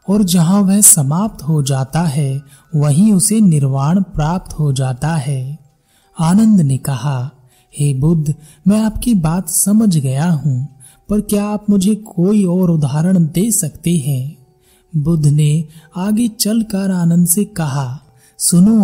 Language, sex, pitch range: Hindi, male, 145-195 Hz